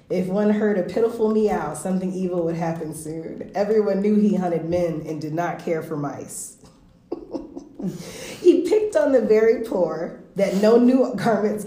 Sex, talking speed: female, 165 wpm